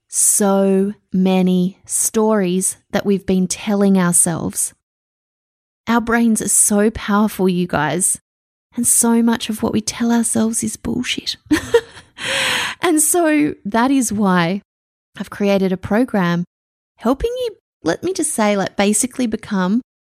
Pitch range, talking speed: 185-230 Hz, 130 wpm